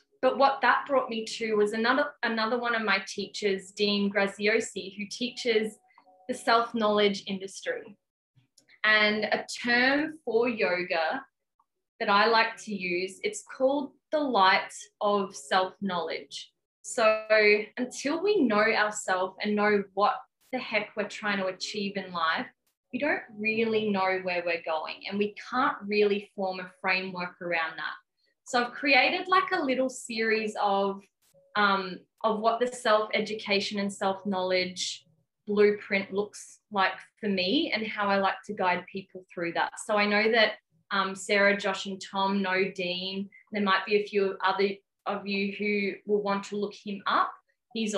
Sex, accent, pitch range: female, Australian, 195-235 Hz